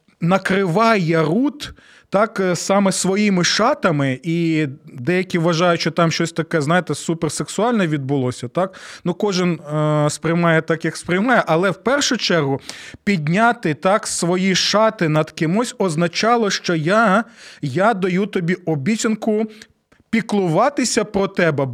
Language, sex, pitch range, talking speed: Ukrainian, male, 160-215 Hz, 120 wpm